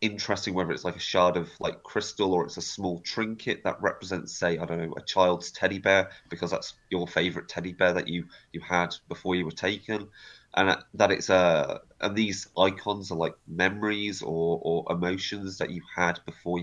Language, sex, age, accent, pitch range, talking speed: English, male, 20-39, British, 90-110 Hz, 200 wpm